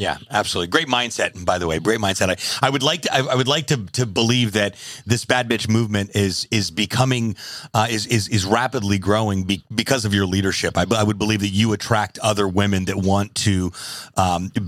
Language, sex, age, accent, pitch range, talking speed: English, male, 30-49, American, 100-115 Hz, 215 wpm